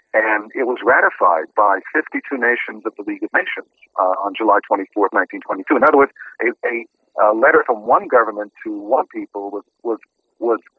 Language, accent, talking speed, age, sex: English, American, 190 wpm, 50-69, male